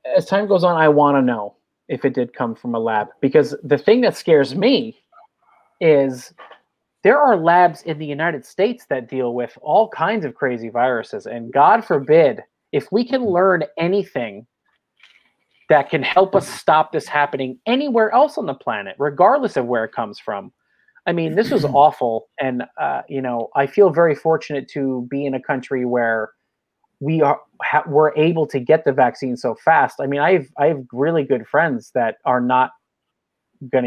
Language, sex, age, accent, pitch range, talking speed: English, male, 30-49, American, 130-170 Hz, 190 wpm